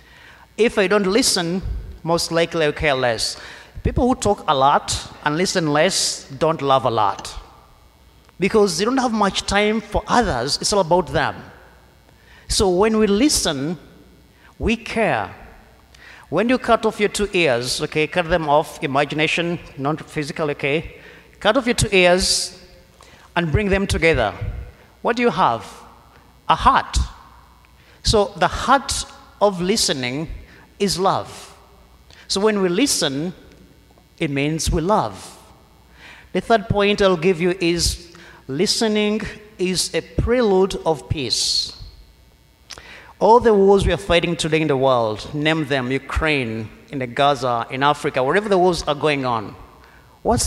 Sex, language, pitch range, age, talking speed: male, English, 140-195 Hz, 30-49, 145 wpm